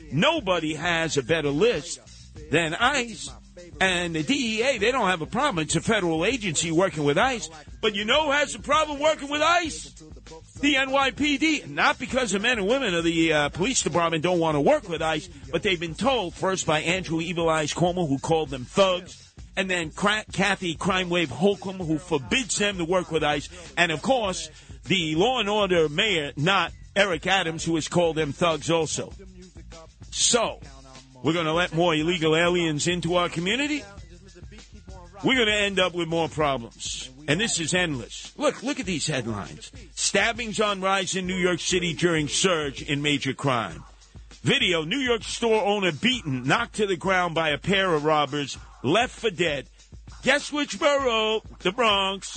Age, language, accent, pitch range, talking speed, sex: 50-69, English, American, 155-215 Hz, 180 wpm, male